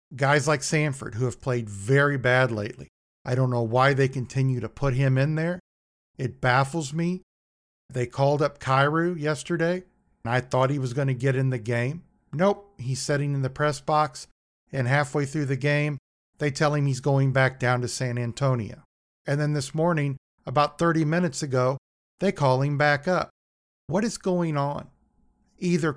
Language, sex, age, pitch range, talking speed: English, male, 50-69, 130-155 Hz, 185 wpm